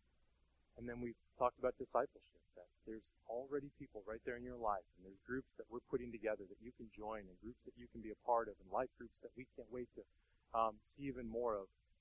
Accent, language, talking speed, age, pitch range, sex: American, English, 240 wpm, 30-49, 110-150 Hz, male